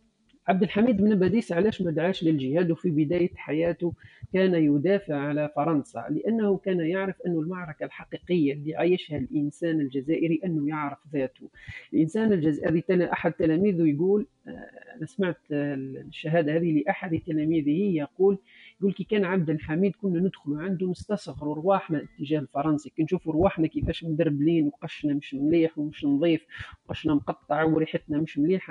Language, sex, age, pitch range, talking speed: Arabic, male, 50-69, 155-195 Hz, 140 wpm